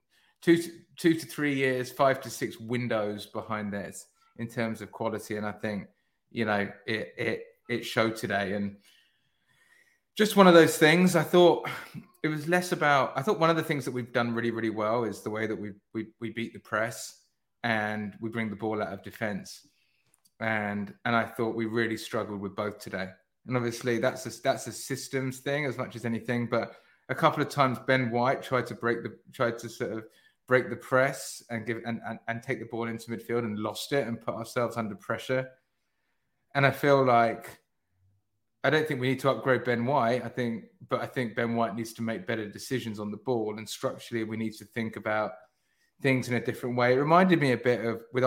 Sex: male